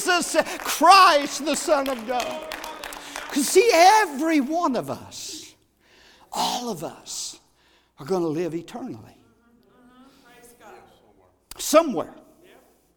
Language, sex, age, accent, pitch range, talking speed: English, male, 60-79, American, 175-255 Hz, 95 wpm